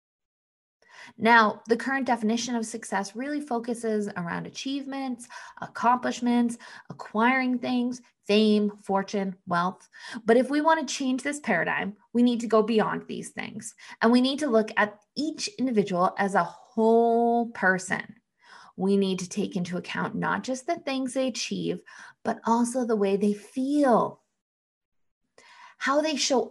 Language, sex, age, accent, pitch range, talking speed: English, female, 20-39, American, 210-265 Hz, 145 wpm